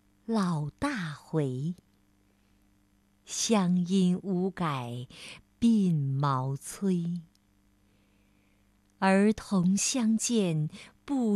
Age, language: 50-69, Chinese